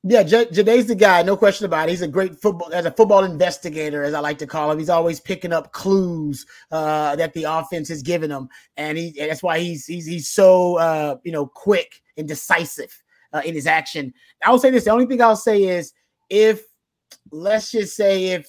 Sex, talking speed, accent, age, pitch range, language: male, 230 wpm, American, 30-49, 160-210 Hz, English